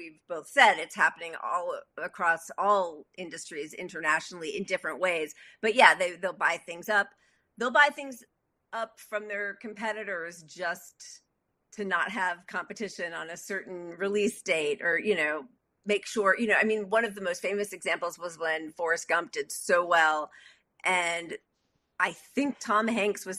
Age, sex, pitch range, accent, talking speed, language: 40-59, female, 175-225 Hz, American, 165 wpm, English